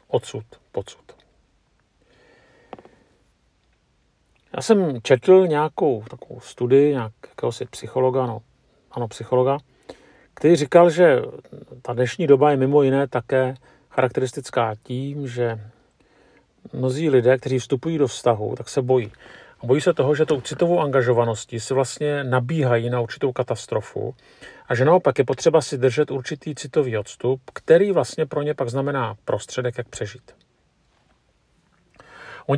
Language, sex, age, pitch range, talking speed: Czech, male, 50-69, 120-145 Hz, 125 wpm